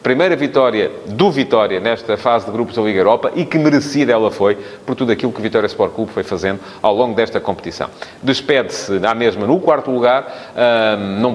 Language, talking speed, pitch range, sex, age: Portuguese, 195 wpm, 105-145 Hz, male, 30-49